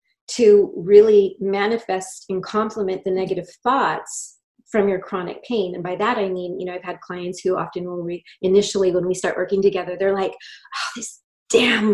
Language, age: English, 30-49